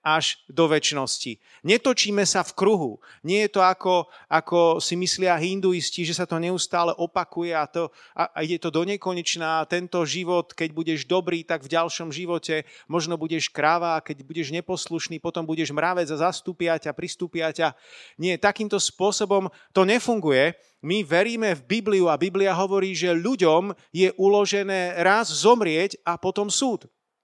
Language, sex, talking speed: Slovak, male, 155 wpm